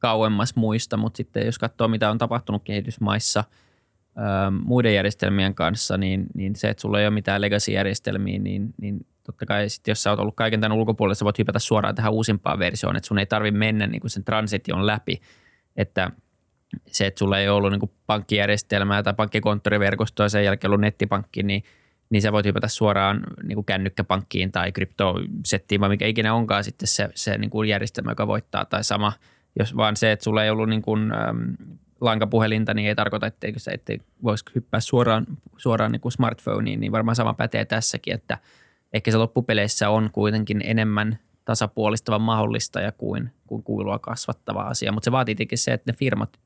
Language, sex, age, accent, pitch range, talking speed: Finnish, male, 20-39, native, 100-110 Hz, 175 wpm